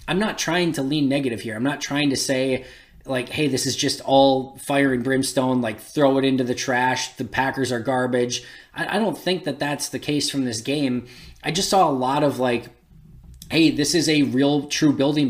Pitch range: 130-165 Hz